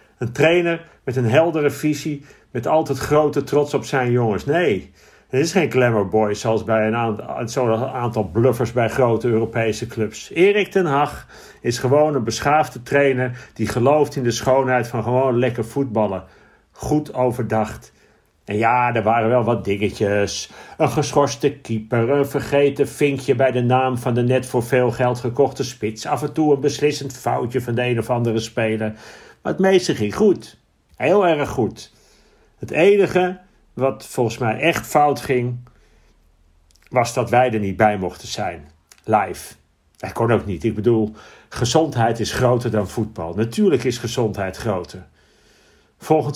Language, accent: Dutch, Dutch